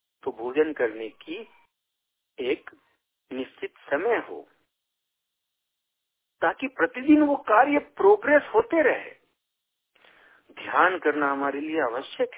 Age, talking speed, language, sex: 50-69, 95 wpm, Hindi, male